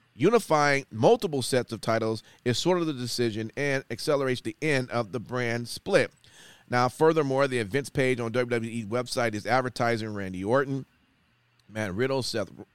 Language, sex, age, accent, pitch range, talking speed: English, male, 30-49, American, 110-140 Hz, 155 wpm